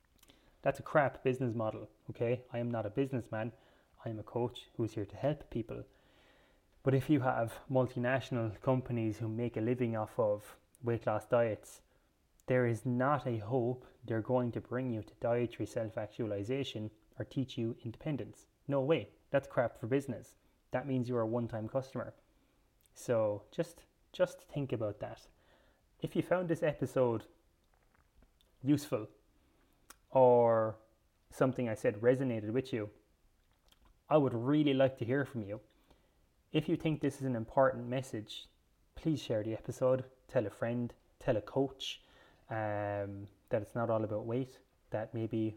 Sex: male